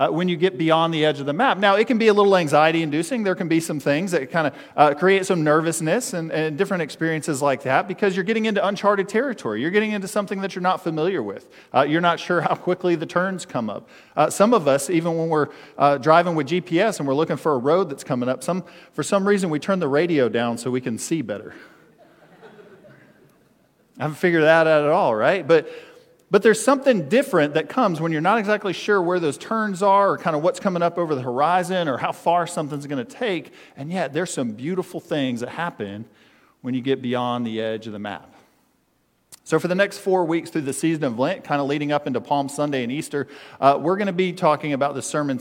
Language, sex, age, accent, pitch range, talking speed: English, male, 40-59, American, 145-185 Hz, 240 wpm